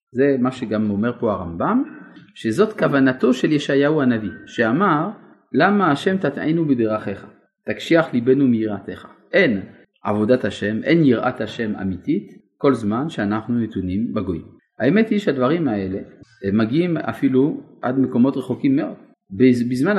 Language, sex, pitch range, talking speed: Hebrew, male, 110-185 Hz, 125 wpm